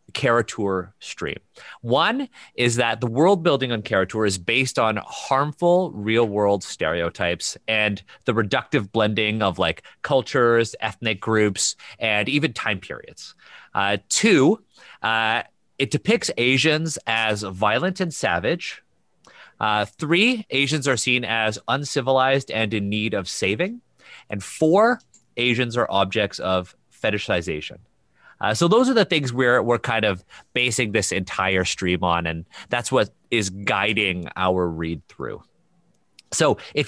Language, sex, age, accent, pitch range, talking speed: English, male, 30-49, American, 105-155 Hz, 135 wpm